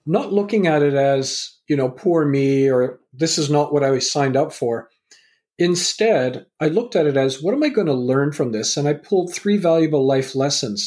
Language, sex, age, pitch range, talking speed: English, male, 40-59, 125-160 Hz, 220 wpm